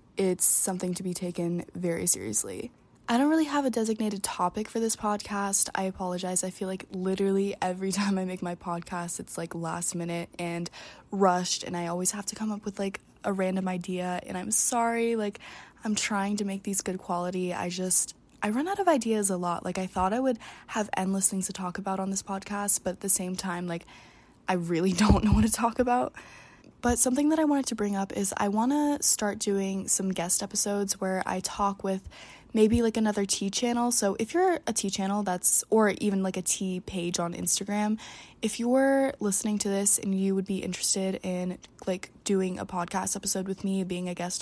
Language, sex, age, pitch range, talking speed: English, female, 20-39, 185-215 Hz, 210 wpm